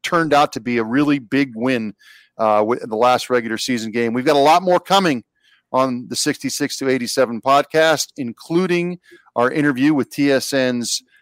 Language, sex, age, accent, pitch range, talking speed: English, male, 40-59, American, 115-145 Hz, 170 wpm